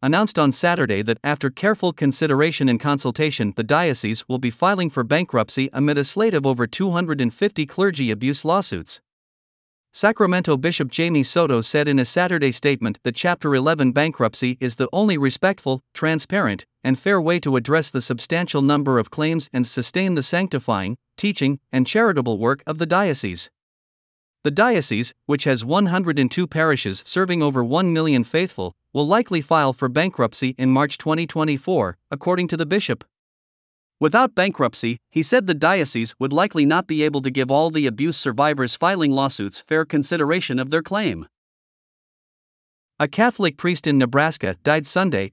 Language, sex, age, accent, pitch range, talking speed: English, male, 50-69, American, 130-170 Hz, 155 wpm